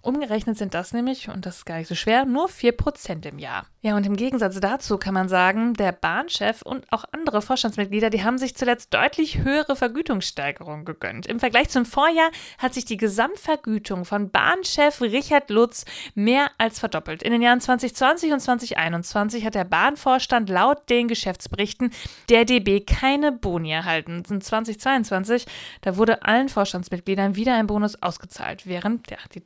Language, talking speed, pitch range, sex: German, 165 wpm, 190-245 Hz, female